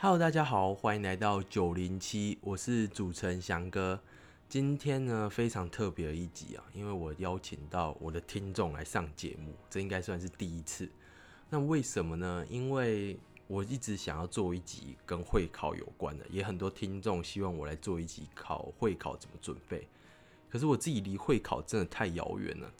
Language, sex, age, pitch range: Chinese, male, 20-39, 85-105 Hz